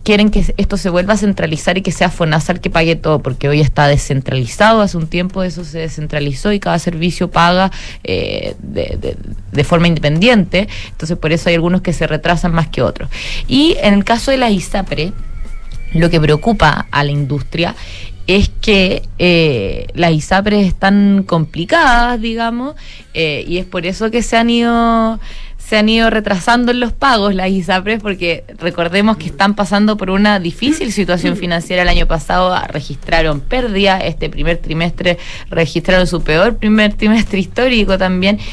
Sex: female